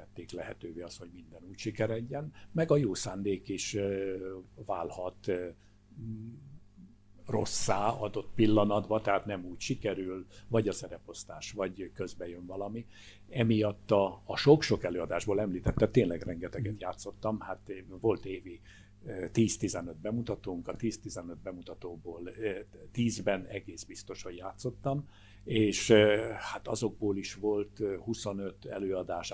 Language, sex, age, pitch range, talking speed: Hungarian, male, 60-79, 95-110 Hz, 110 wpm